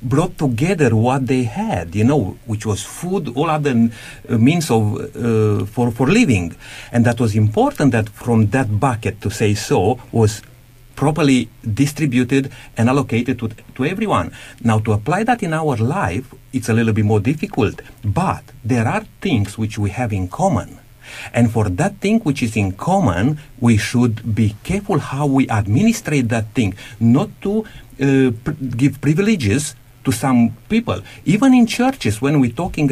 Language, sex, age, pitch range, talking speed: English, male, 50-69, 115-140 Hz, 170 wpm